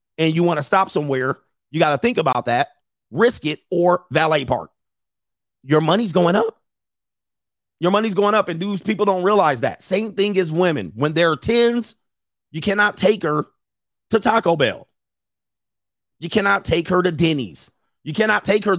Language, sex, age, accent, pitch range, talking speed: English, male, 40-59, American, 125-175 Hz, 180 wpm